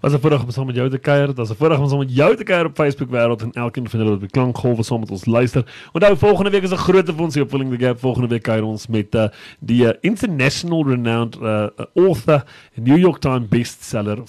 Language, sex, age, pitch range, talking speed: English, male, 30-49, 110-145 Hz, 270 wpm